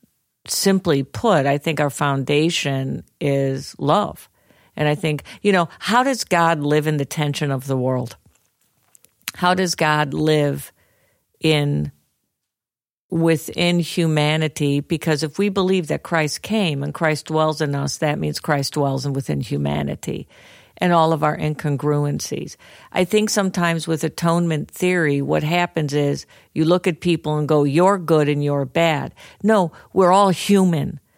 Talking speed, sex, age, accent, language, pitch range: 150 wpm, female, 50-69, American, English, 145-175 Hz